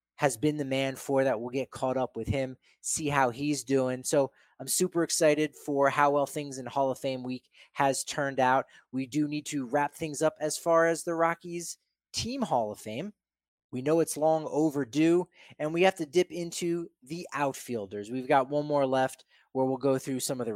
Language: English